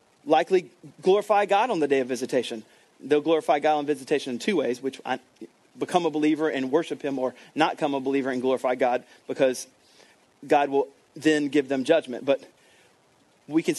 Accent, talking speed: American, 180 wpm